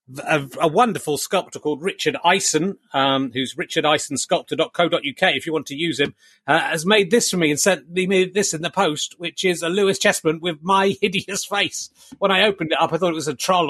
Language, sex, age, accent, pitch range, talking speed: English, male, 30-49, British, 155-205 Hz, 215 wpm